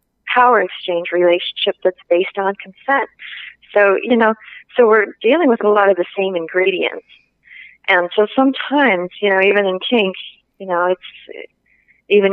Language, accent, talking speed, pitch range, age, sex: English, American, 155 wpm, 185-220 Hz, 30-49, female